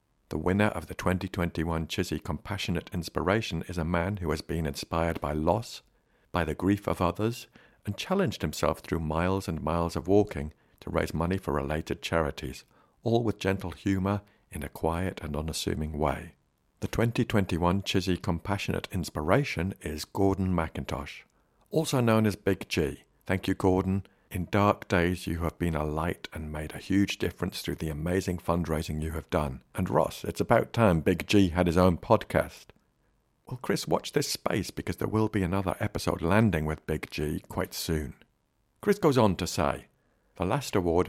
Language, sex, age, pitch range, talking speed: English, male, 60-79, 80-100 Hz, 175 wpm